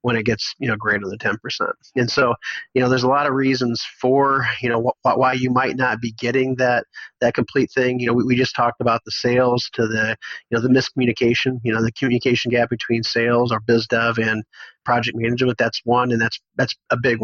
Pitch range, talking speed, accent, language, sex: 115-125 Hz, 235 wpm, American, English, male